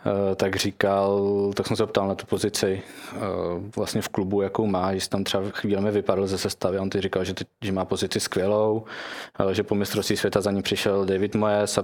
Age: 20-39